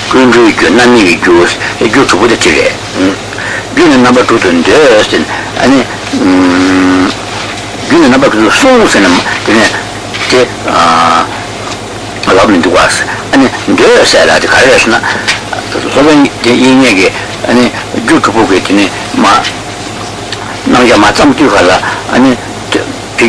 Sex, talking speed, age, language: male, 65 wpm, 60-79, Italian